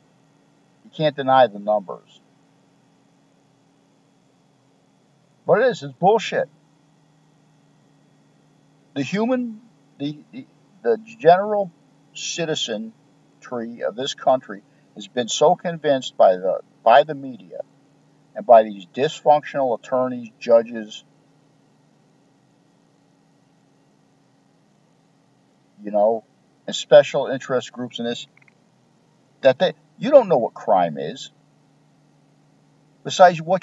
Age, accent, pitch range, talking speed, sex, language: 50-69, American, 130-160 Hz, 95 wpm, male, English